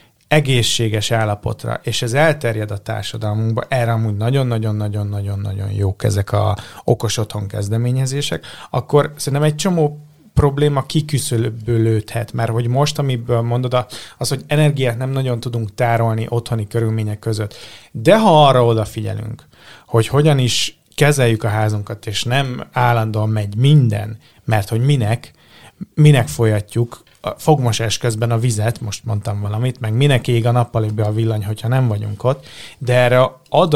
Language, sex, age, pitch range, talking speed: Hungarian, male, 30-49, 110-130 Hz, 140 wpm